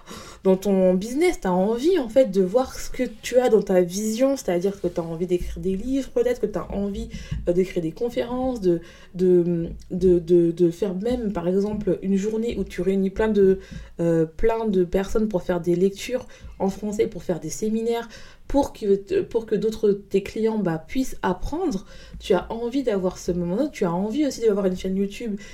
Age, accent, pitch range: 20-39, French, 175-225 Hz